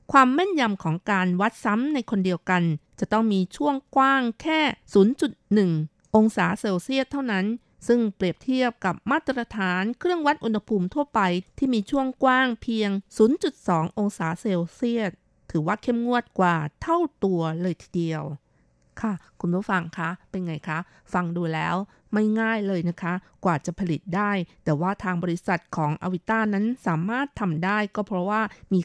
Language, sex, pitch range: Thai, female, 175-220 Hz